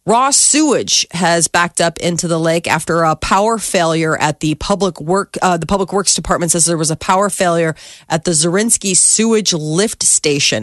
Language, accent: English, American